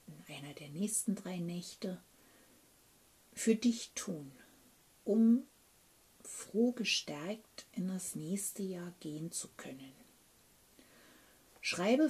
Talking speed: 100 wpm